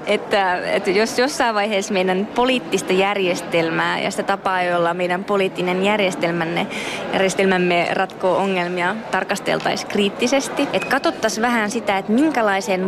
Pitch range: 185-235 Hz